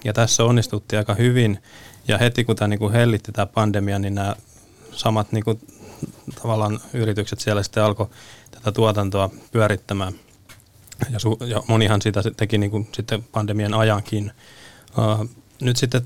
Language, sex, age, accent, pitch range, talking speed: Finnish, male, 20-39, native, 105-115 Hz, 140 wpm